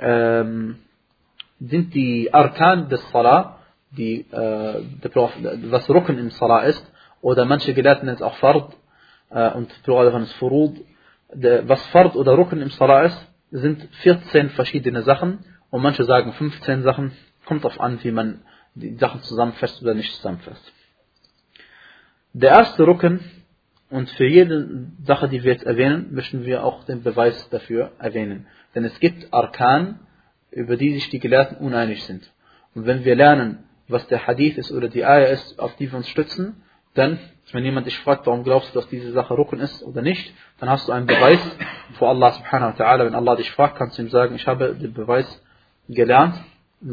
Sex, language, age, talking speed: male, German, 30-49, 180 wpm